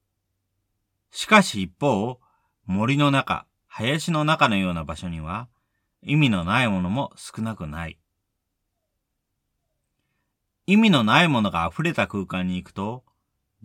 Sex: male